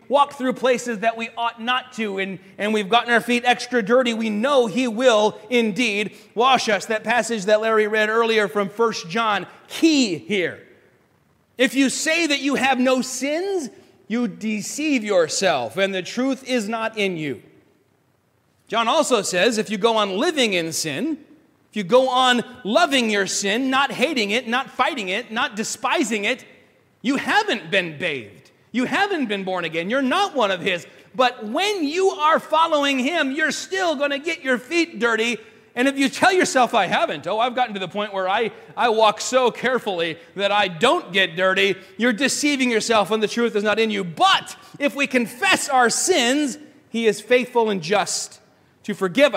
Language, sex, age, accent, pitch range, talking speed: English, male, 30-49, American, 210-270 Hz, 185 wpm